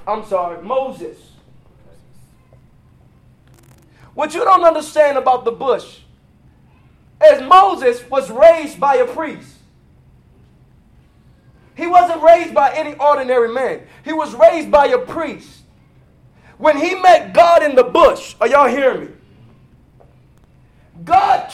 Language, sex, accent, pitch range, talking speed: English, male, American, 265-345 Hz, 115 wpm